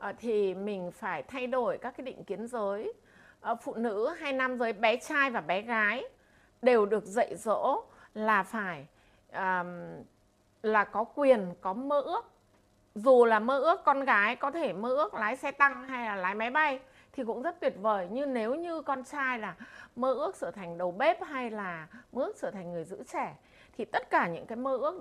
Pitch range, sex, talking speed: 210-290 Hz, female, 200 wpm